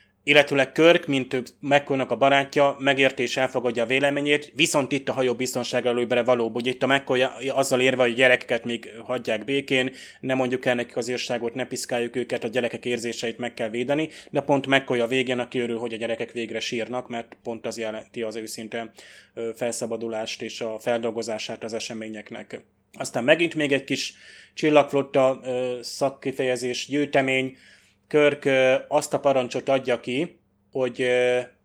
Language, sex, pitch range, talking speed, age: Hungarian, male, 120-140 Hz, 155 wpm, 20-39